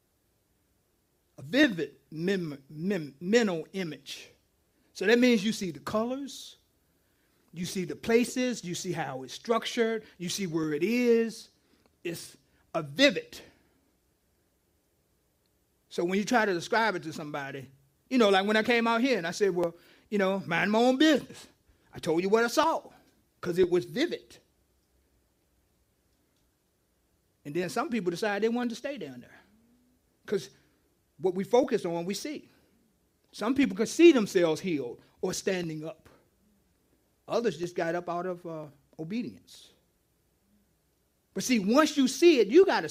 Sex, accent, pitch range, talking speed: male, American, 165-245 Hz, 150 wpm